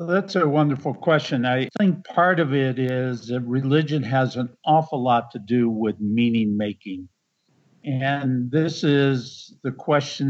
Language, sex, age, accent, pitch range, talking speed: English, male, 60-79, American, 120-145 Hz, 150 wpm